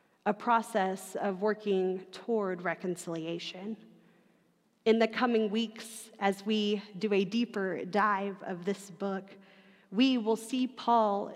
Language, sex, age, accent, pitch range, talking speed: English, female, 30-49, American, 190-225 Hz, 120 wpm